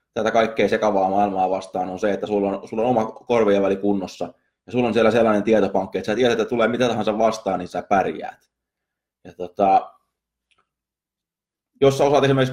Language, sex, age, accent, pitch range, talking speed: Finnish, male, 20-39, native, 95-120 Hz, 185 wpm